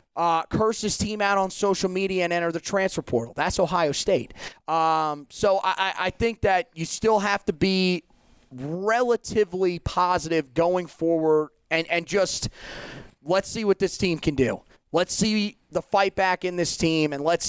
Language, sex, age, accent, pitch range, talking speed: English, male, 30-49, American, 160-200 Hz, 175 wpm